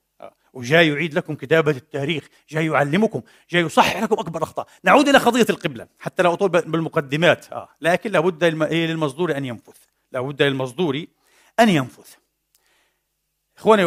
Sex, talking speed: male, 135 wpm